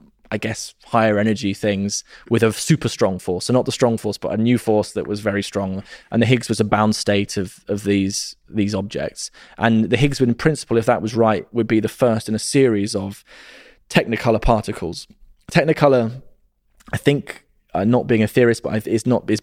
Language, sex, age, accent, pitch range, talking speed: English, male, 20-39, British, 105-120 Hz, 205 wpm